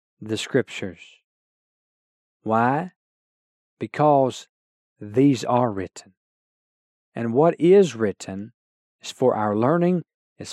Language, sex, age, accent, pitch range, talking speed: English, male, 40-59, American, 105-140 Hz, 90 wpm